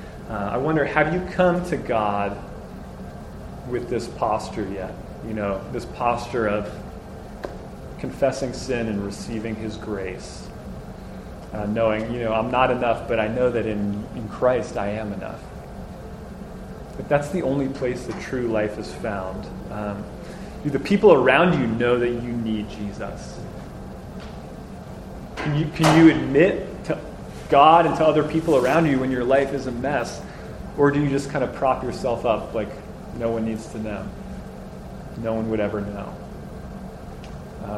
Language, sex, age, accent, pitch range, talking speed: English, male, 30-49, American, 110-135 Hz, 160 wpm